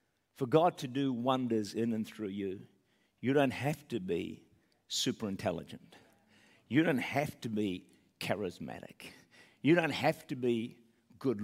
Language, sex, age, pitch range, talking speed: English, male, 50-69, 125-170 Hz, 145 wpm